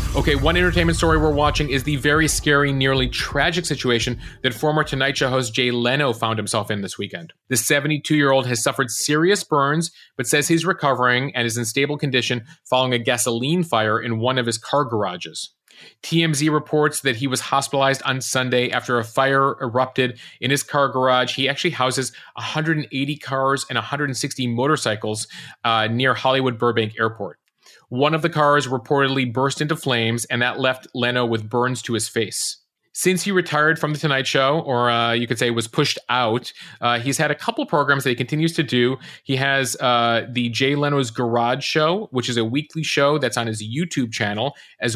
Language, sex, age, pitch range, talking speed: English, male, 30-49, 120-145 Hz, 190 wpm